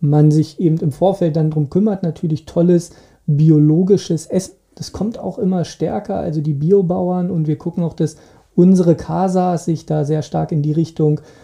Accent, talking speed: German, 180 wpm